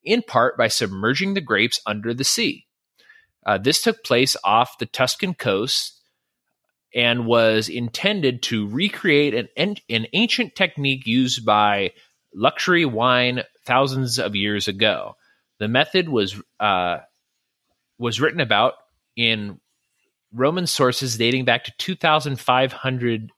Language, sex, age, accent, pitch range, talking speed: English, male, 30-49, American, 105-140 Hz, 120 wpm